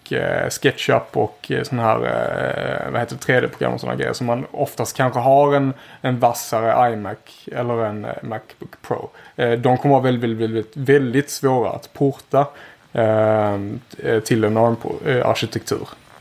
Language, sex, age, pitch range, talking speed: Swedish, male, 20-39, 115-145 Hz, 155 wpm